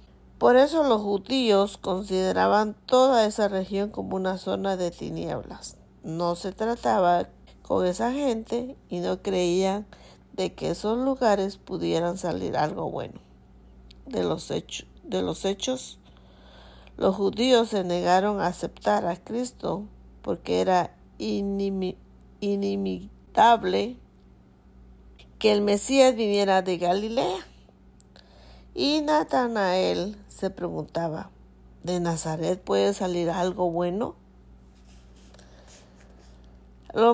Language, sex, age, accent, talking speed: Spanish, female, 40-59, American, 100 wpm